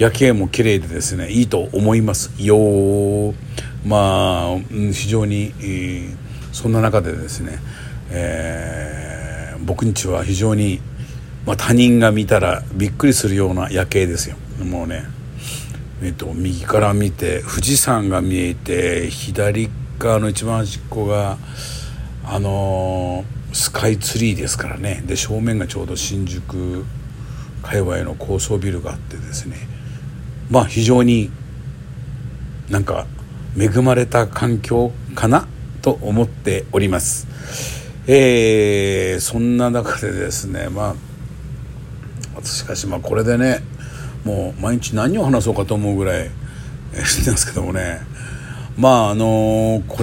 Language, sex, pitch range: Japanese, male, 100-125 Hz